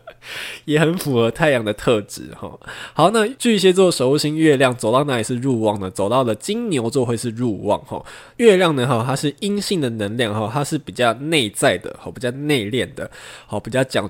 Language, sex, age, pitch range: Chinese, male, 20-39, 110-145 Hz